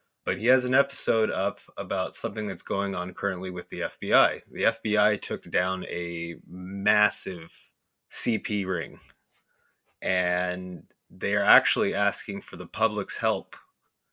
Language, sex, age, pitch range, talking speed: English, male, 20-39, 90-115 Hz, 130 wpm